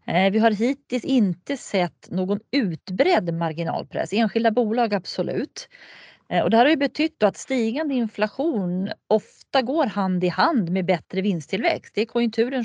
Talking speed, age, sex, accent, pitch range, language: 150 wpm, 30-49, female, native, 180-250 Hz, Swedish